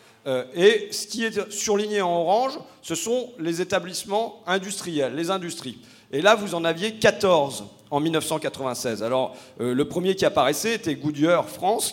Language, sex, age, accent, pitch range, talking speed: French, male, 40-59, French, 145-195 Hz, 150 wpm